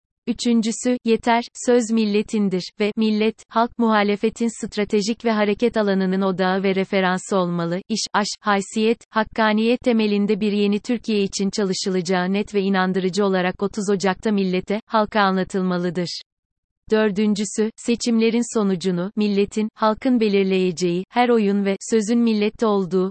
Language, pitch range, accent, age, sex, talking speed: Turkish, 190-225 Hz, native, 30-49, female, 120 wpm